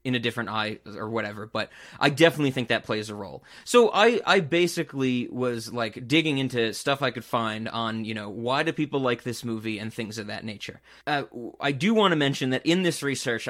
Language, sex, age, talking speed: English, male, 30-49, 220 wpm